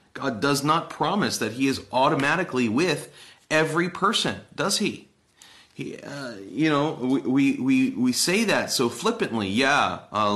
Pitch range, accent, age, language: 110-170 Hz, American, 30-49, English